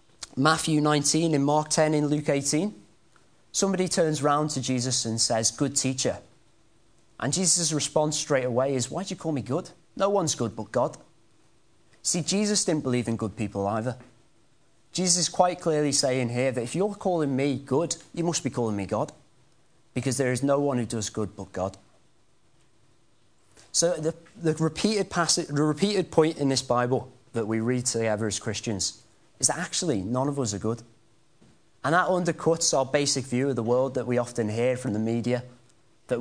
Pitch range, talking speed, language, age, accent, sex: 120-155 Hz, 185 wpm, English, 30-49, British, male